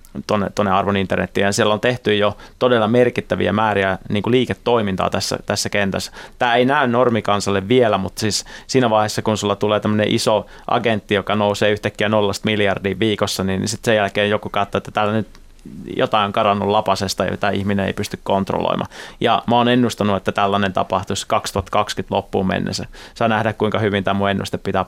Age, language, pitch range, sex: 30-49, Finnish, 100-110 Hz, male